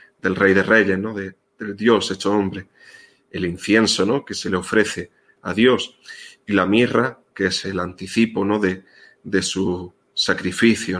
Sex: male